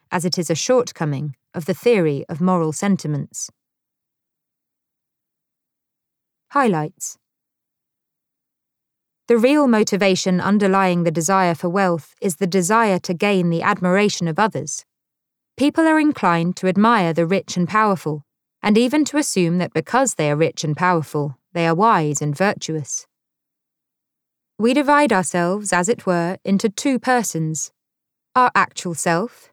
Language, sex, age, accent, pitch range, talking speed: English, female, 20-39, British, 165-220 Hz, 135 wpm